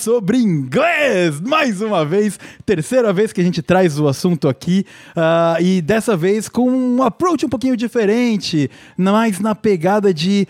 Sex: male